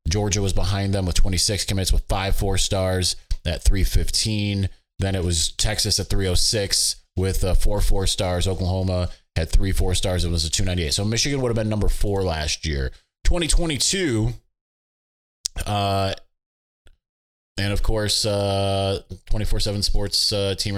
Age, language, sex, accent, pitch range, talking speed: 20-39, English, male, American, 85-105 Hz, 155 wpm